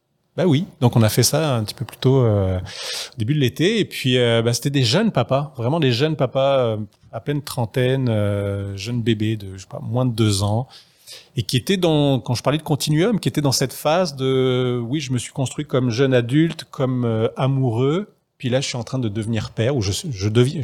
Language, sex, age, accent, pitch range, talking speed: French, male, 30-49, French, 115-140 Hz, 240 wpm